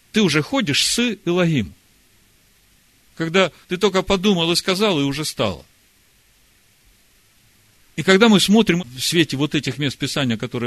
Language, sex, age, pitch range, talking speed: Russian, male, 40-59, 115-155 Hz, 140 wpm